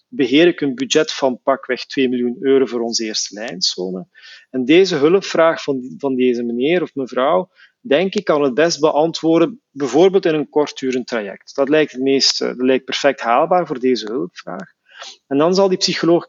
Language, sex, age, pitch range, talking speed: Dutch, male, 40-59, 125-145 Hz, 180 wpm